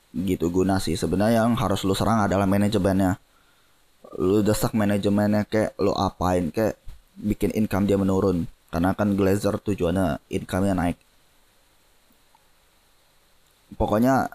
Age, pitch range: 10-29, 100-110 Hz